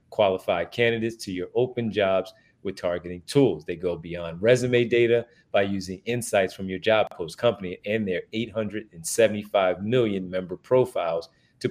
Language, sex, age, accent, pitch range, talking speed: English, male, 30-49, American, 95-125 Hz, 150 wpm